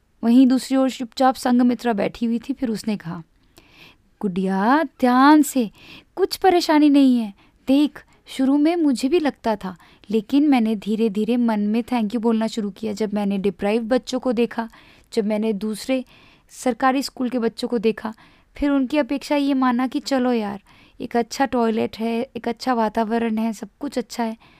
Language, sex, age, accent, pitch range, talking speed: Hindi, female, 20-39, native, 220-270 Hz, 175 wpm